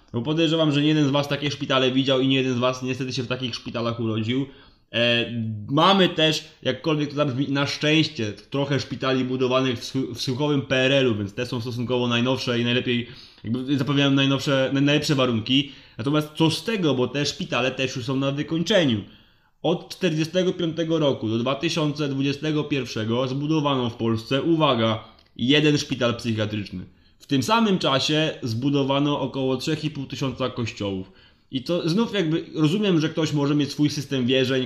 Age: 20-39